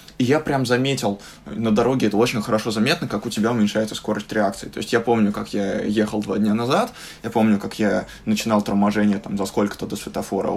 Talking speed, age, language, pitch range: 210 wpm, 20-39, Russian, 105-120 Hz